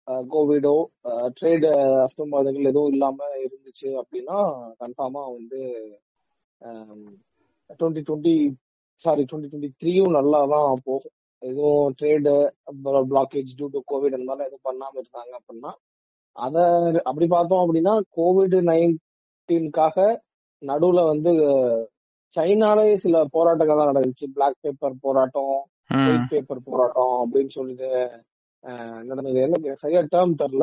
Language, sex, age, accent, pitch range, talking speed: Tamil, male, 20-39, native, 135-170 Hz, 90 wpm